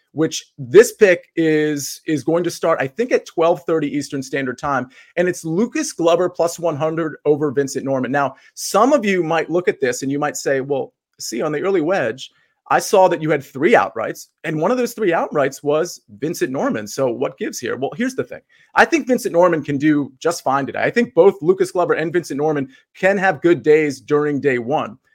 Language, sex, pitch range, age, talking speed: English, male, 150-195 Hz, 30-49, 215 wpm